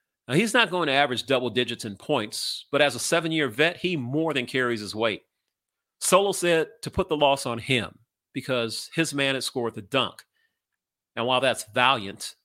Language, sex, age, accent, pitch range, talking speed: English, male, 40-59, American, 120-160 Hz, 195 wpm